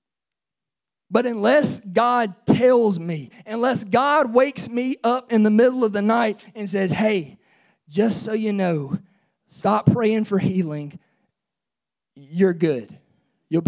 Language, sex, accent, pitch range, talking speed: English, male, American, 185-255 Hz, 130 wpm